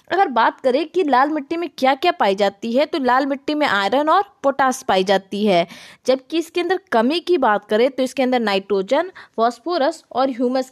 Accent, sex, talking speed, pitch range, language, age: native, female, 200 wpm, 225-315 Hz, Hindi, 20-39